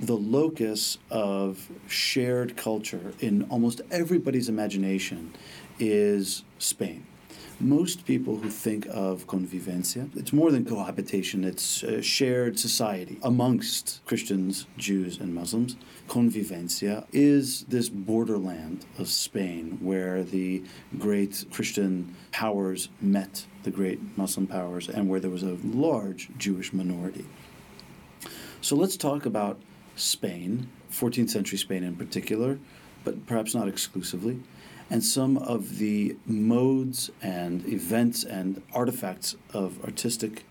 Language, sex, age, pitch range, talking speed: English, male, 40-59, 95-120 Hz, 115 wpm